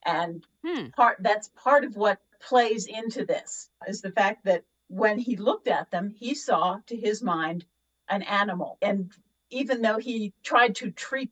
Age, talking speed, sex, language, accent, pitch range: 50-69, 170 wpm, female, English, American, 180-235 Hz